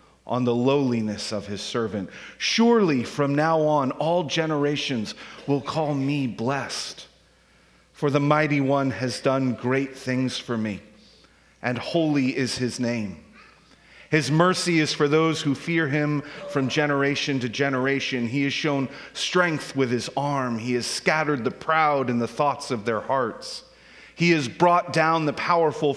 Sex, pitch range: male, 110-145 Hz